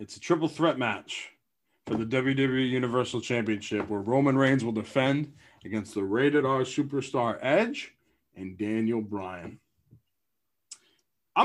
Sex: male